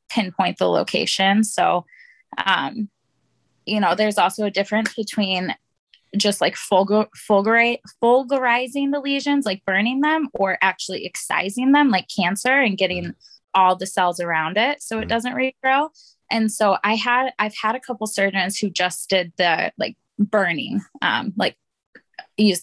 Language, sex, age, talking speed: English, female, 20-39, 150 wpm